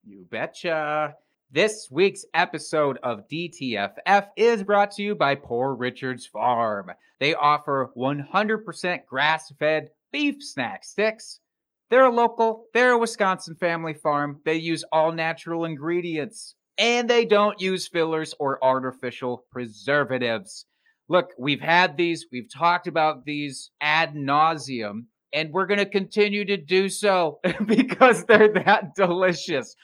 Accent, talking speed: American, 130 wpm